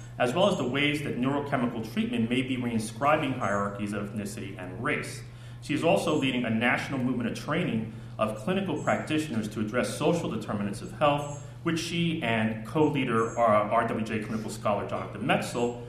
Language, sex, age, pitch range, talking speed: English, male, 30-49, 110-135 Hz, 165 wpm